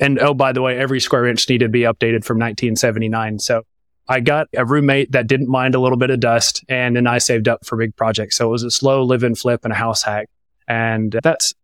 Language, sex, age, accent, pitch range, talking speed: English, male, 30-49, American, 115-135 Hz, 245 wpm